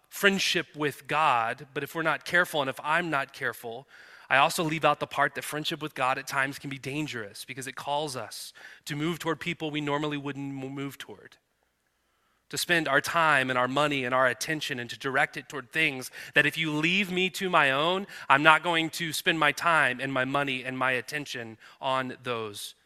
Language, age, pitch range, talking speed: English, 30-49, 135-160 Hz, 210 wpm